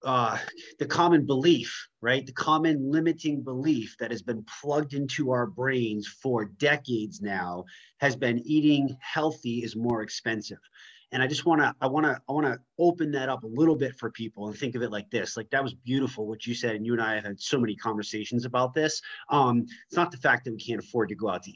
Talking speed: 230 wpm